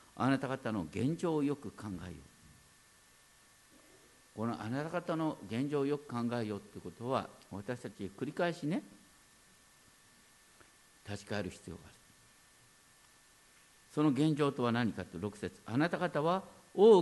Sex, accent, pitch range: male, native, 120-175 Hz